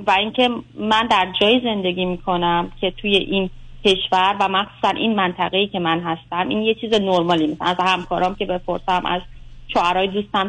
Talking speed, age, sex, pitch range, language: 170 wpm, 30-49, female, 185-250 Hz, Persian